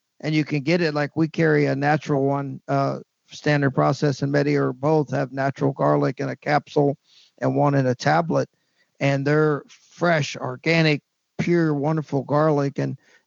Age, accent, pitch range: 50-69, American, 145-170 Hz